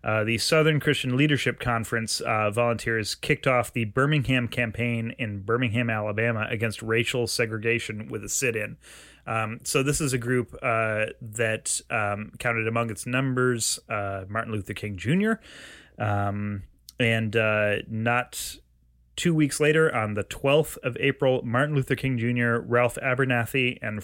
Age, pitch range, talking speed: 30-49, 110-130 Hz, 145 wpm